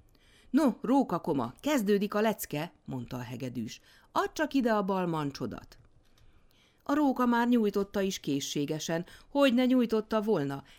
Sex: female